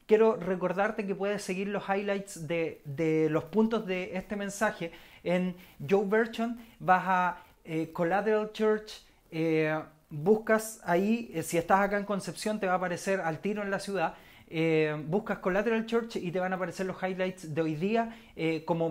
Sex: male